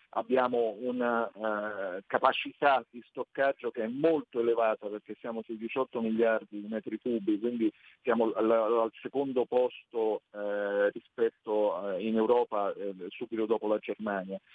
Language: Italian